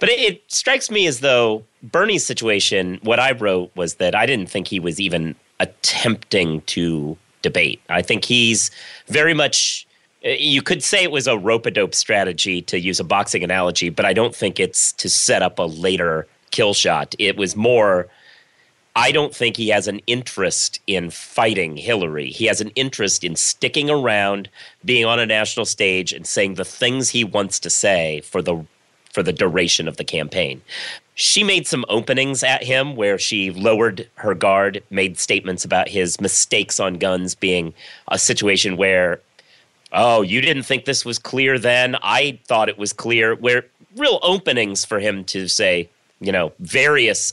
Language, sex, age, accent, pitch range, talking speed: English, male, 30-49, American, 90-125 Hz, 175 wpm